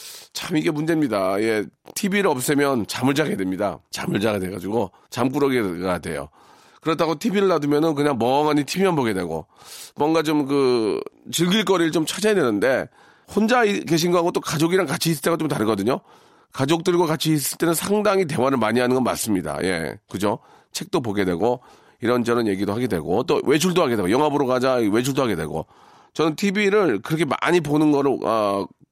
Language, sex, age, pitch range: Korean, male, 40-59, 120-175 Hz